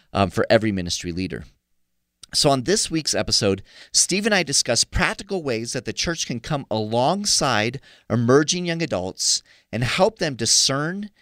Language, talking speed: English, 155 wpm